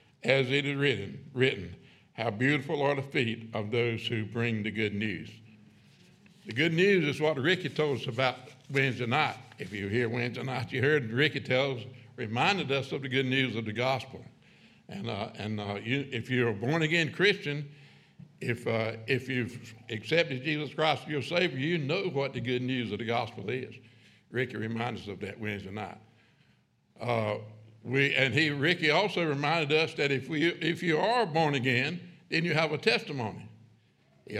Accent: American